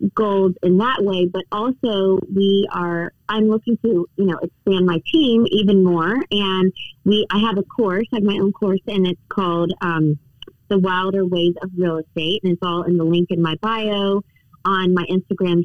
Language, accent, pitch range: English, American, 170-200 Hz